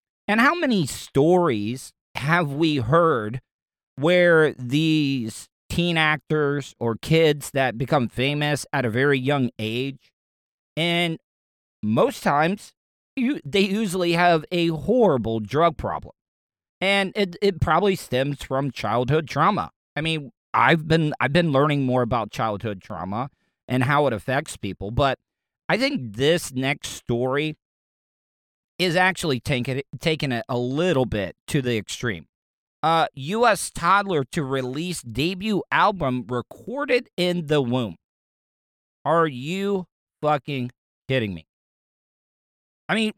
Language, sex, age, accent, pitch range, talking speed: English, male, 40-59, American, 125-180 Hz, 130 wpm